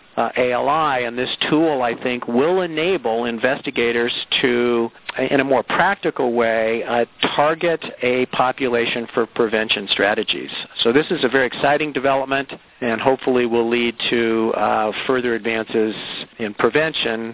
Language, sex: English, male